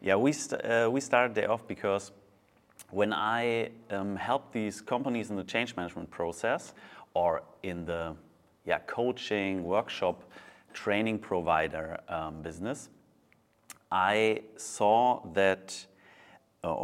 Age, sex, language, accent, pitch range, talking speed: 30-49, male, English, German, 90-110 Hz, 120 wpm